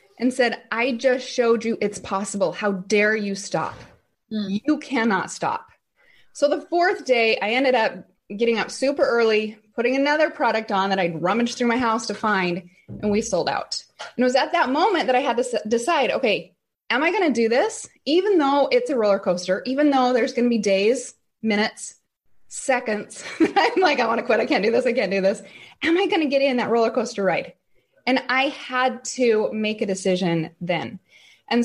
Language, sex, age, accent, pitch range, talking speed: English, female, 20-39, American, 205-270 Hz, 205 wpm